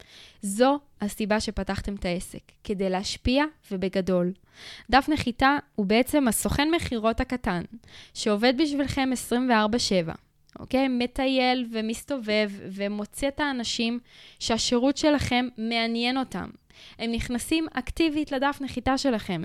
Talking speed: 105 wpm